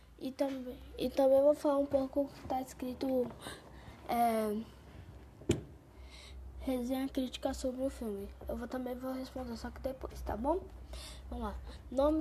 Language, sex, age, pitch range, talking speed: Portuguese, female, 10-29, 235-275 Hz, 140 wpm